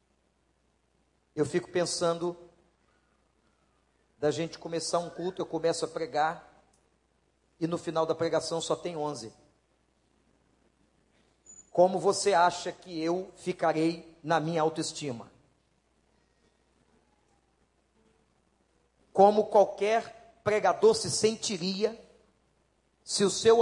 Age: 40-59